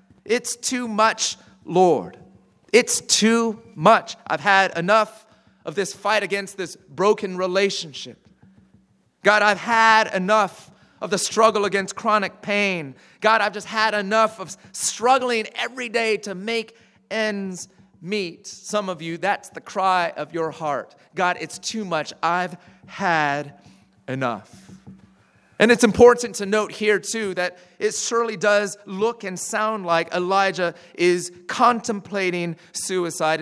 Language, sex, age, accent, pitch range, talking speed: English, male, 30-49, American, 175-215 Hz, 135 wpm